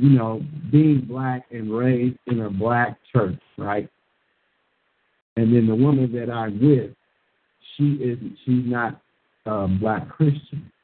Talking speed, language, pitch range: 125 wpm, English, 110-135 Hz